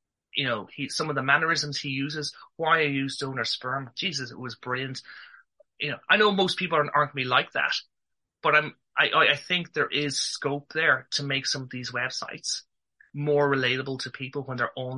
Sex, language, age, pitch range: male, English, 30-49, 115-145 Hz